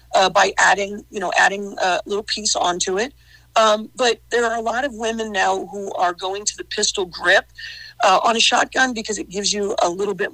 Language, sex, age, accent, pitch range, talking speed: English, female, 50-69, American, 185-225 Hz, 220 wpm